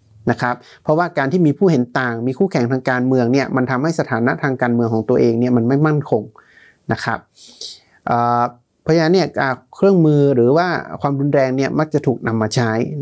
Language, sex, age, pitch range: Thai, male, 30-49, 120-160 Hz